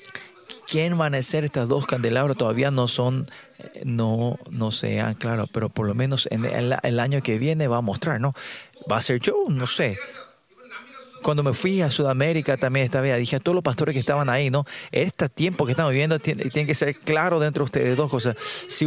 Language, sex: Spanish, male